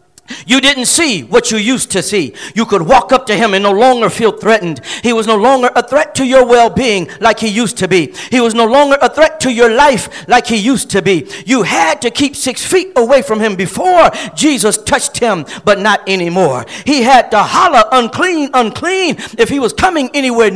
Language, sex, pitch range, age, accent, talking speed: English, male, 200-285 Hz, 50-69, American, 215 wpm